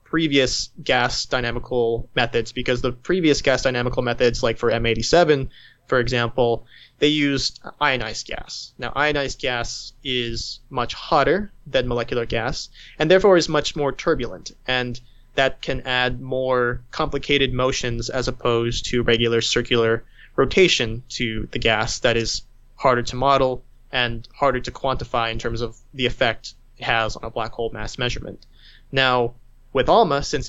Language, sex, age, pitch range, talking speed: English, male, 20-39, 120-135 Hz, 150 wpm